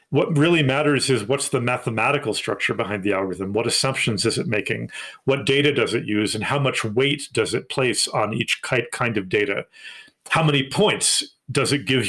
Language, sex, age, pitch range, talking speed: English, male, 40-59, 115-145 Hz, 195 wpm